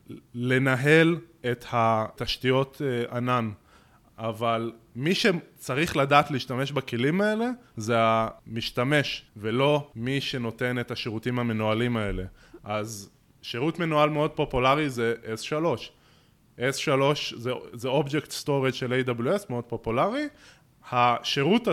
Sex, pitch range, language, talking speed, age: male, 125-195 Hz, English, 100 wpm, 20-39